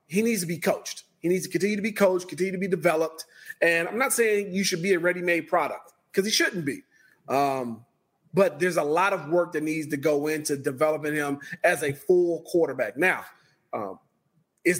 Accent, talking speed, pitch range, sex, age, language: American, 205 wpm, 150-195 Hz, male, 40-59, English